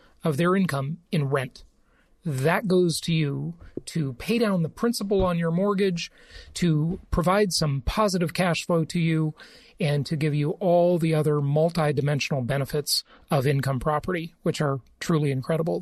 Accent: American